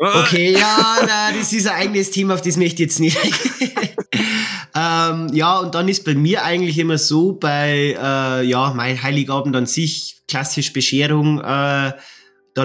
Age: 20-39